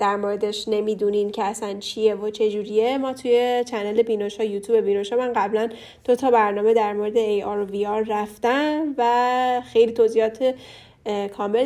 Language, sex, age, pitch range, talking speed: Persian, female, 10-29, 215-255 Hz, 155 wpm